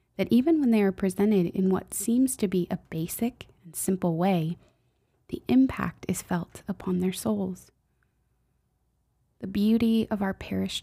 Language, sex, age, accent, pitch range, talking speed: English, female, 20-39, American, 175-205 Hz, 155 wpm